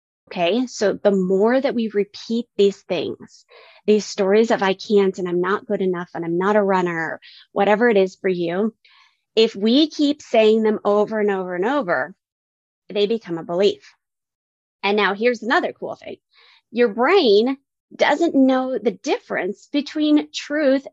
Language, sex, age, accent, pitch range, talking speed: English, female, 30-49, American, 205-255 Hz, 165 wpm